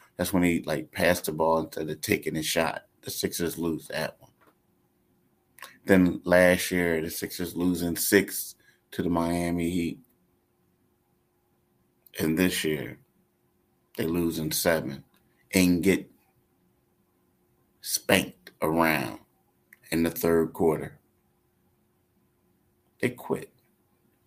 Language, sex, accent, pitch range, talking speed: English, male, American, 80-95 Hz, 110 wpm